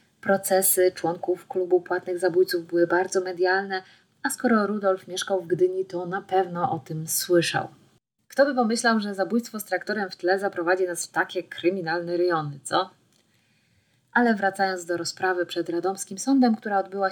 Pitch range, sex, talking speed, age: 180-215 Hz, female, 160 wpm, 20-39